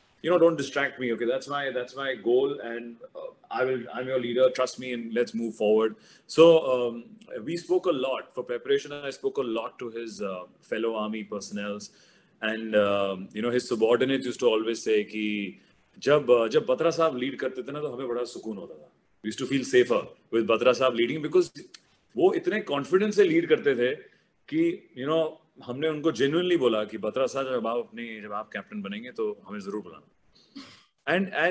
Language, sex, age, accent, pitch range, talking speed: English, male, 30-49, Indian, 120-175 Hz, 145 wpm